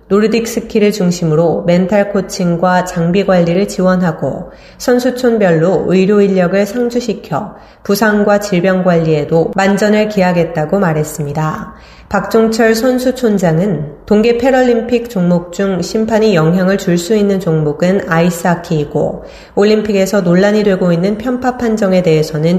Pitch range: 170-210 Hz